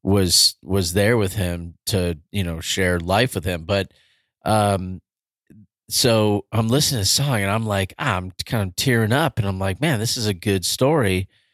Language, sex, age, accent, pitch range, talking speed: English, male, 30-49, American, 95-110 Hz, 200 wpm